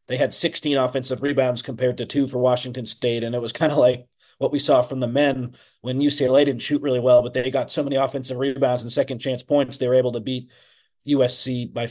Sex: male